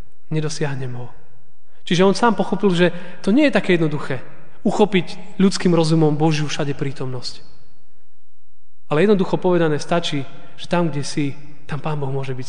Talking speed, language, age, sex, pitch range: 150 wpm, Slovak, 30-49, male, 145-185 Hz